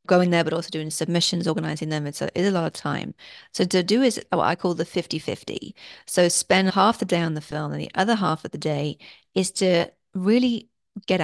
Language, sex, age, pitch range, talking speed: English, female, 40-59, 155-185 Hz, 225 wpm